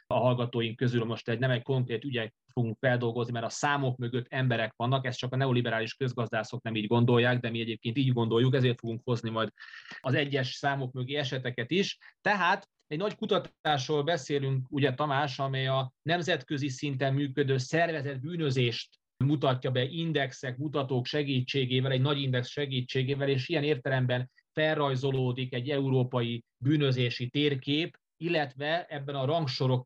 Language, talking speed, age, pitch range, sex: Hungarian, 150 wpm, 30-49, 120-145 Hz, male